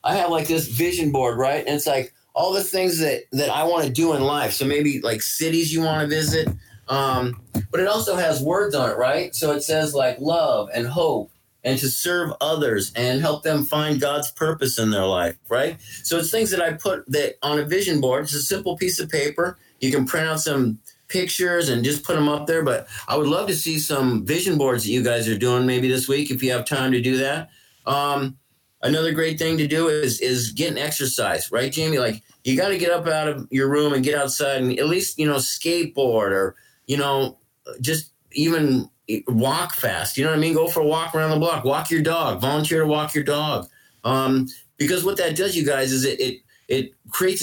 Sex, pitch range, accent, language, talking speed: male, 130-160 Hz, American, English, 230 wpm